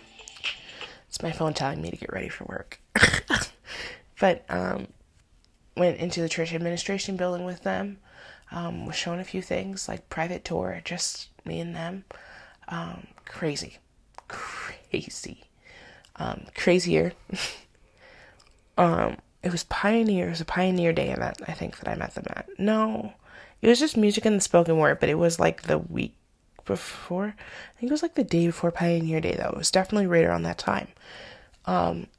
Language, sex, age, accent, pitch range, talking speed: English, female, 20-39, American, 160-195 Hz, 165 wpm